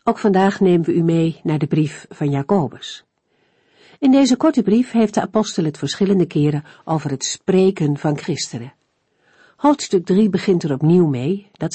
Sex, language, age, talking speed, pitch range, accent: female, Dutch, 50-69, 170 wpm, 150-205 Hz, Dutch